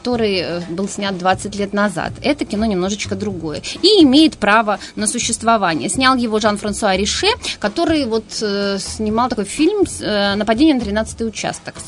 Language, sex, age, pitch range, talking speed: Russian, female, 20-39, 190-245 Hz, 160 wpm